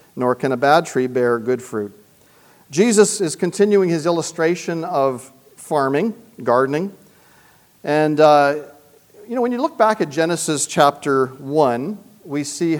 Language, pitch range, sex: English, 140-205 Hz, male